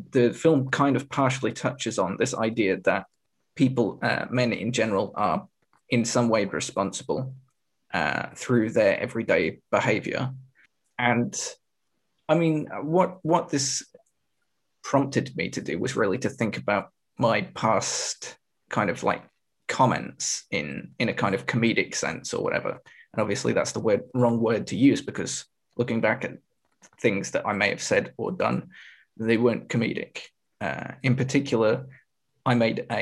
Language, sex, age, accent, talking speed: English, male, 20-39, British, 155 wpm